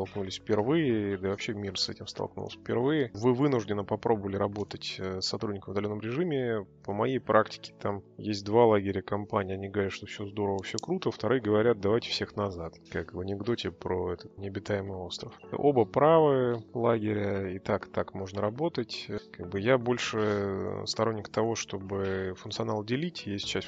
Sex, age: male, 20-39